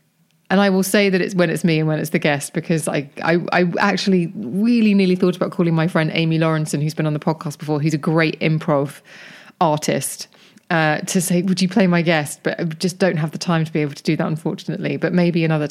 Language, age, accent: English, 20-39, British